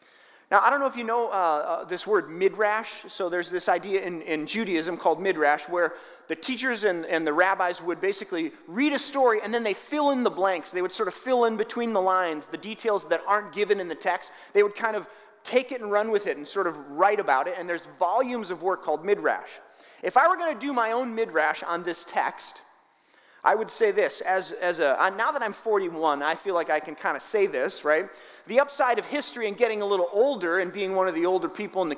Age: 30-49